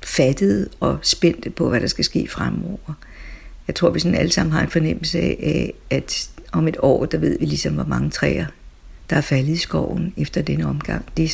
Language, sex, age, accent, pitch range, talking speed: Danish, female, 60-79, native, 135-165 Hz, 205 wpm